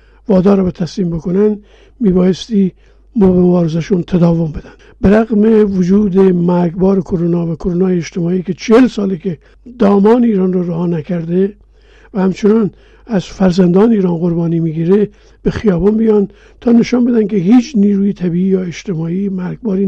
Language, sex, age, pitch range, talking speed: Persian, male, 50-69, 180-210 Hz, 140 wpm